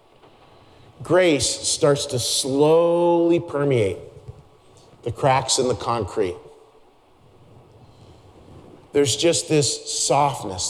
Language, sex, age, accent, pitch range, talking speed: English, male, 40-59, American, 120-150 Hz, 80 wpm